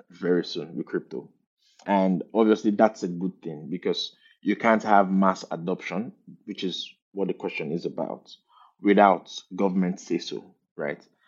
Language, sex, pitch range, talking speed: English, male, 95-115 Hz, 150 wpm